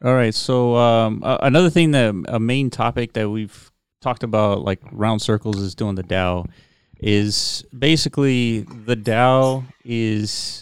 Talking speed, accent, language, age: 155 wpm, American, English, 30-49